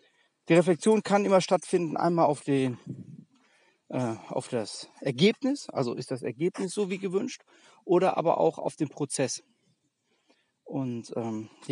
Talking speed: 140 wpm